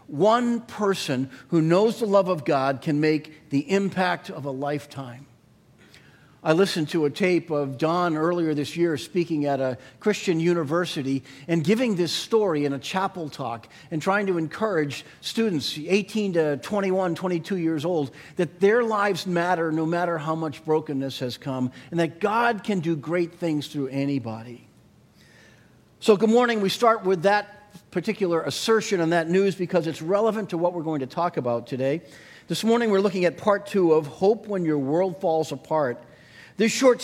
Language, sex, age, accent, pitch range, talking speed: English, male, 40-59, American, 150-195 Hz, 175 wpm